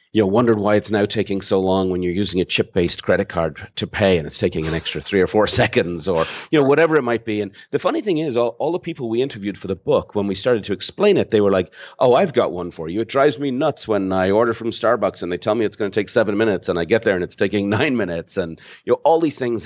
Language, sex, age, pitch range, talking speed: English, male, 40-59, 85-110 Hz, 300 wpm